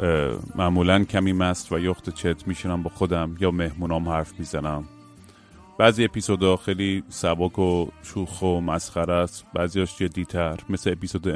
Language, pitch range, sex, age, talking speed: Persian, 85-100 Hz, male, 30-49, 135 wpm